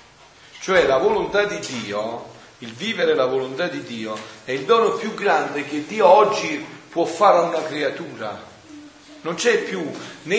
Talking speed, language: 160 wpm, Italian